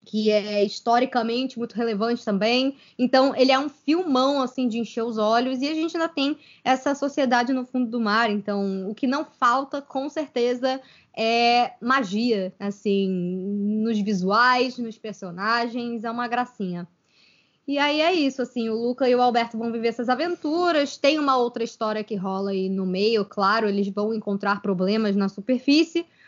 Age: 10-29